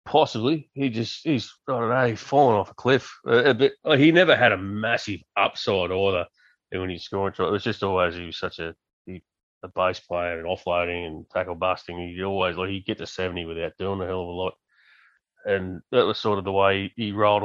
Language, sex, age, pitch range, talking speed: English, male, 30-49, 90-100 Hz, 225 wpm